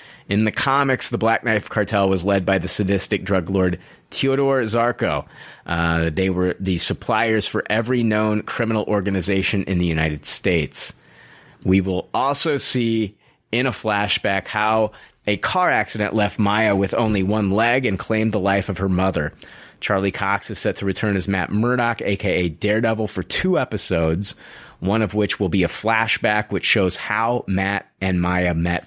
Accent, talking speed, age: American, 170 wpm, 30-49